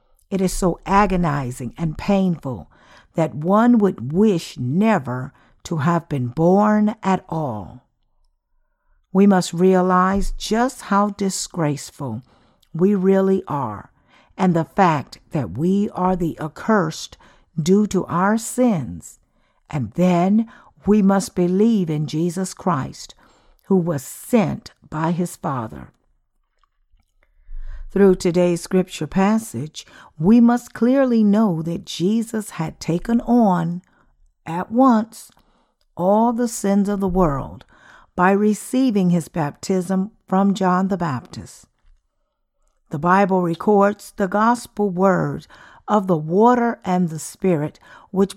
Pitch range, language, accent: 160-205 Hz, English, American